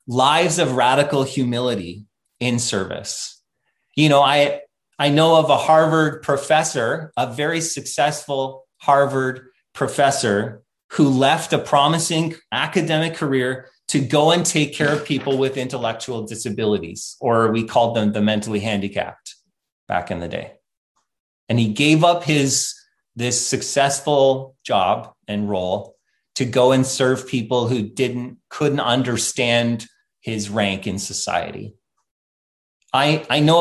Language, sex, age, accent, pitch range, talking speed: English, male, 30-49, American, 120-155 Hz, 130 wpm